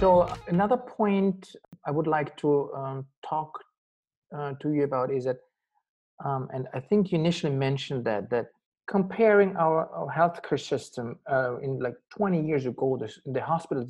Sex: male